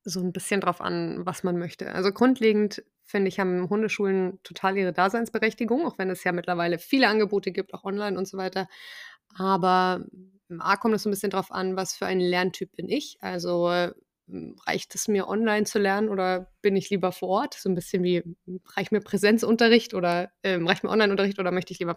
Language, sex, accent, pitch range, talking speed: German, female, German, 185-220 Hz, 205 wpm